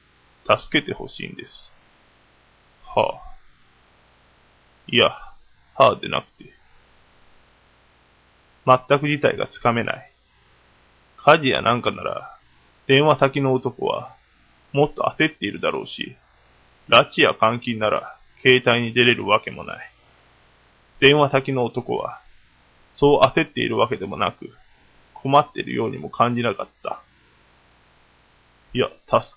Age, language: 20-39, Japanese